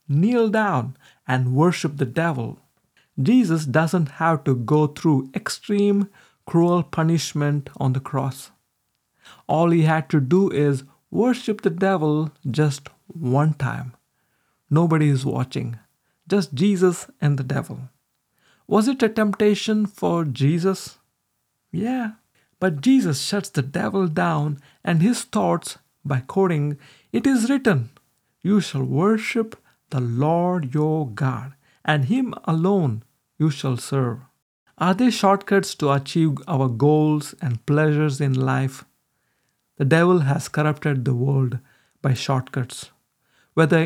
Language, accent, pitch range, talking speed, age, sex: English, Indian, 135-185 Hz, 125 wpm, 50-69, male